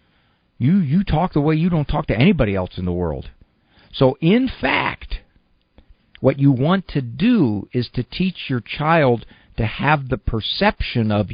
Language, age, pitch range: English, 50-69, 100-155 Hz